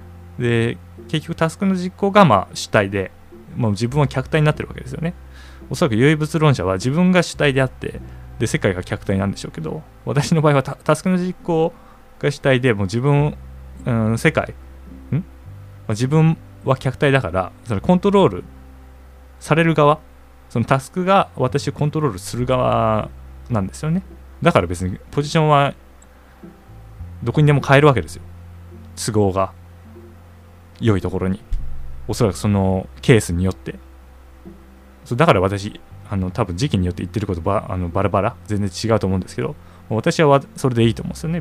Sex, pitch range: male, 85-125 Hz